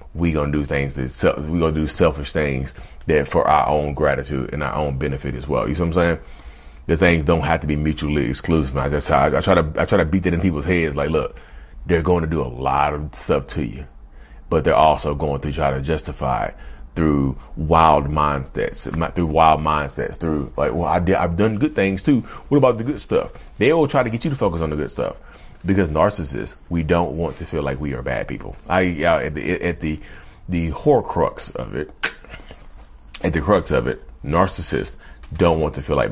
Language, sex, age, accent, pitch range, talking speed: English, male, 30-49, American, 70-90 Hz, 225 wpm